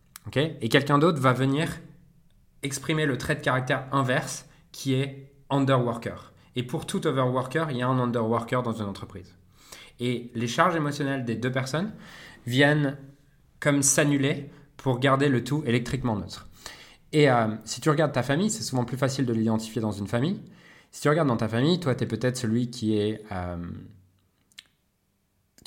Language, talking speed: French, 170 wpm